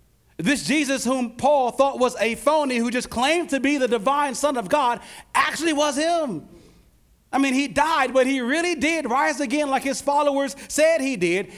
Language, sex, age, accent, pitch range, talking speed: English, male, 40-59, American, 185-275 Hz, 190 wpm